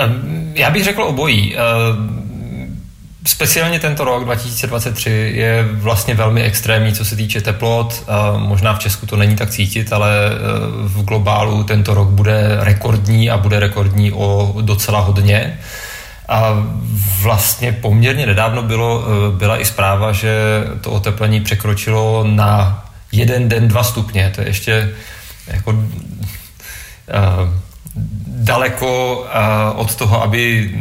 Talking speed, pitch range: 120 wpm, 100-115 Hz